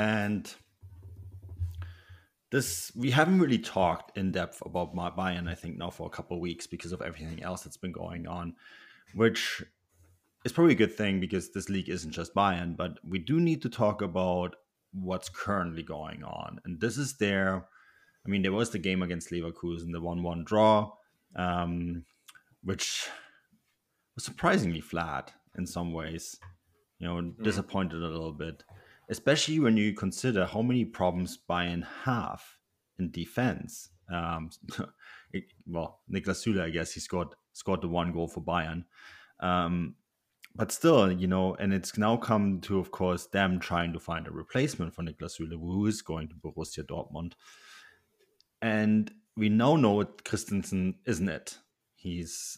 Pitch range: 85-105 Hz